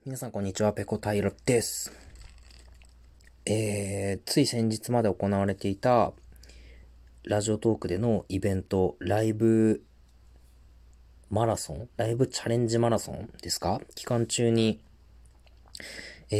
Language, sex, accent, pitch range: Japanese, male, native, 75-115 Hz